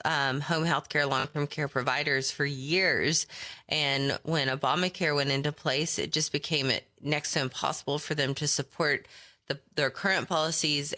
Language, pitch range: English, 140-165 Hz